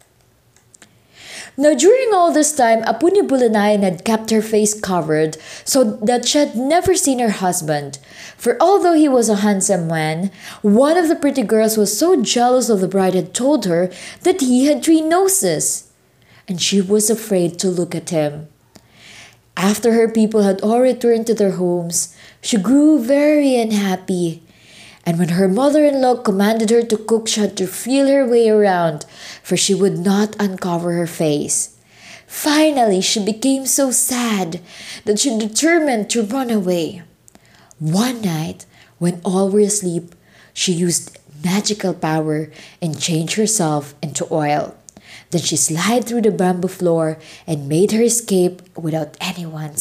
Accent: Filipino